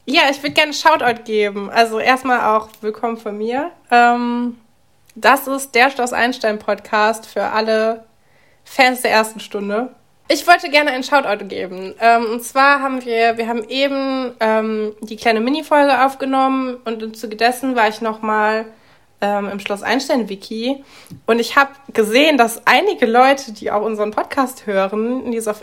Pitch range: 220-265 Hz